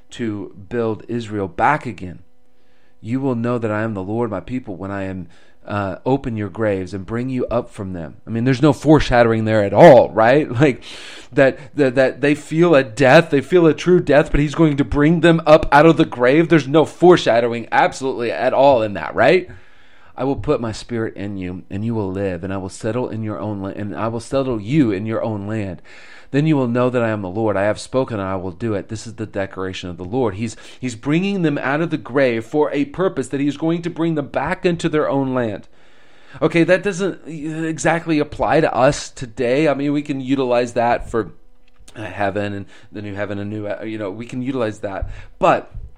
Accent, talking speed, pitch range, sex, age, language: American, 230 wpm, 105-145 Hz, male, 30-49, English